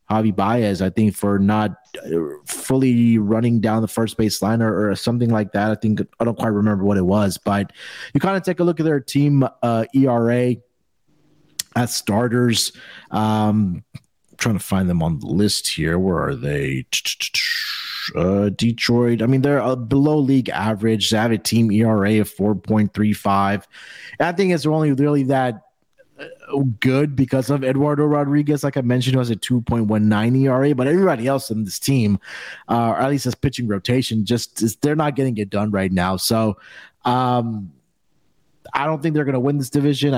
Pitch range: 105-130 Hz